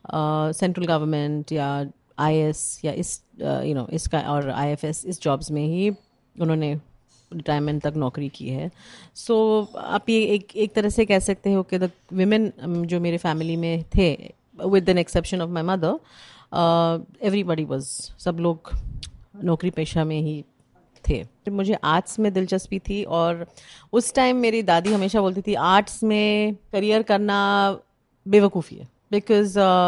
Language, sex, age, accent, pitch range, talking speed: Hindi, female, 30-49, native, 160-200 Hz, 155 wpm